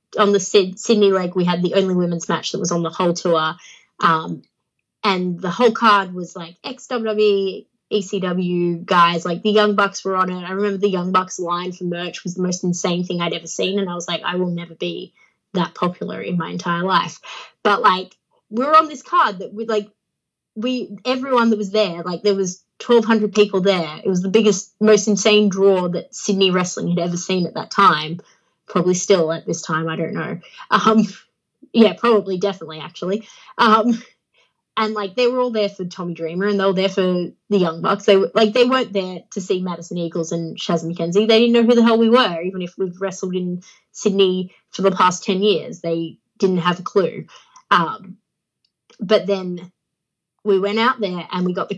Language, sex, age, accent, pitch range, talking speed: English, female, 20-39, Australian, 175-210 Hz, 210 wpm